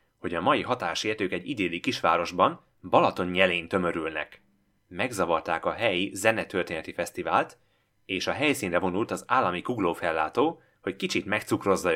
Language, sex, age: Hungarian, male, 30-49